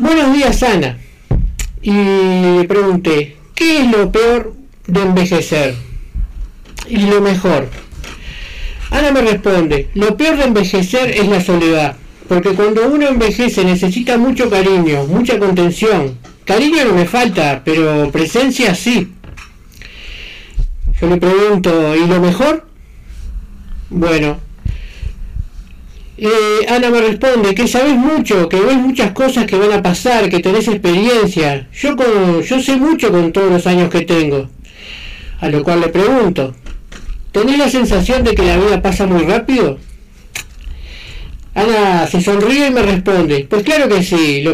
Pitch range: 165-230 Hz